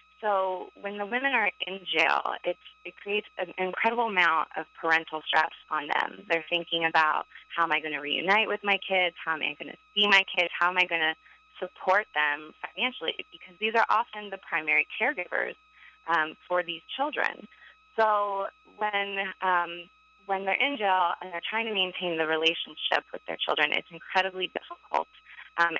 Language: English